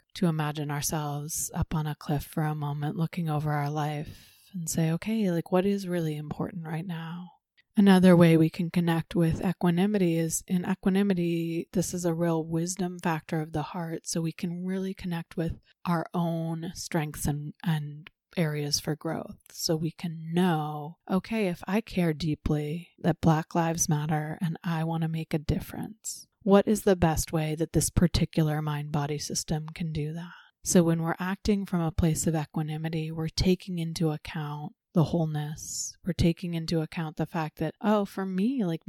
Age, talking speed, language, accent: 30-49, 180 wpm, English, American